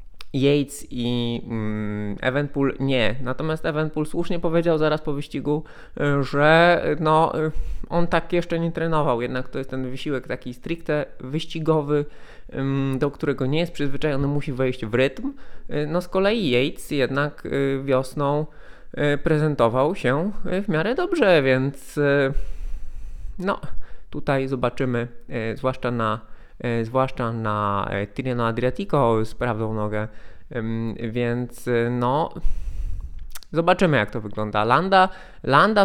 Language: Polish